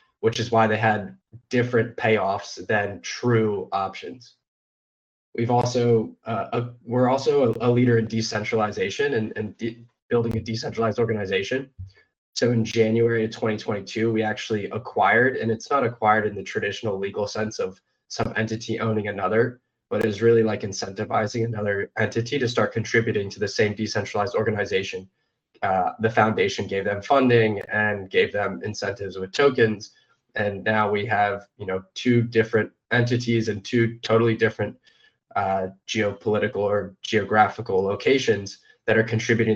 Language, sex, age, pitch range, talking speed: English, male, 20-39, 105-120 Hz, 145 wpm